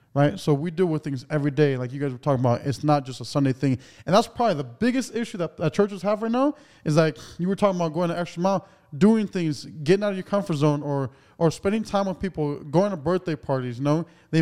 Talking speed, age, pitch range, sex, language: 260 wpm, 20-39, 135-175 Hz, male, English